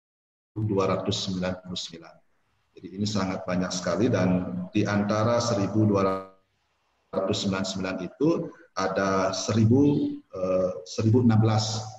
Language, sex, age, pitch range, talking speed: Indonesian, male, 40-59, 90-110 Hz, 75 wpm